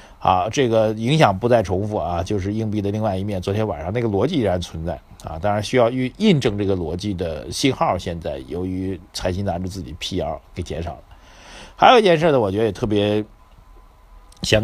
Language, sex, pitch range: Chinese, male, 90-110 Hz